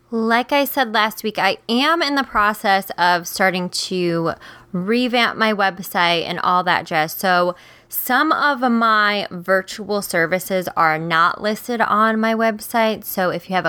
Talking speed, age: 160 wpm, 20-39